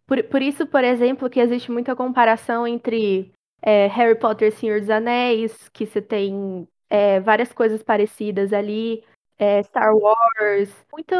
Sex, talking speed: female, 135 wpm